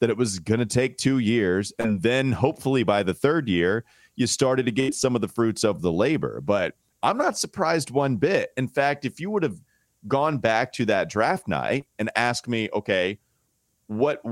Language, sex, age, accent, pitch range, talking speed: English, male, 30-49, American, 110-135 Hz, 205 wpm